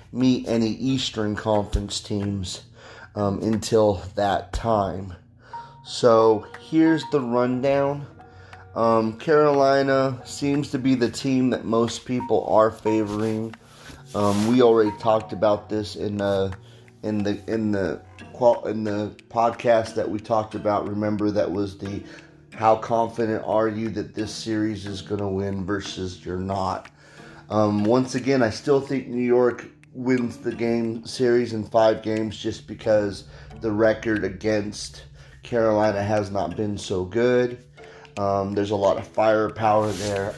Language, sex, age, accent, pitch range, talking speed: English, male, 30-49, American, 105-120 Hz, 140 wpm